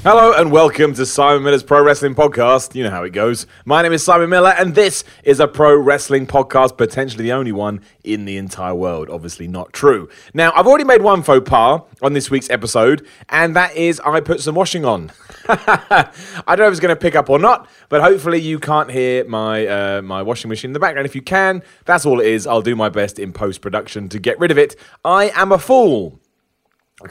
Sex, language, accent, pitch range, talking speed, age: male, English, British, 115-165 Hz, 230 wpm, 30-49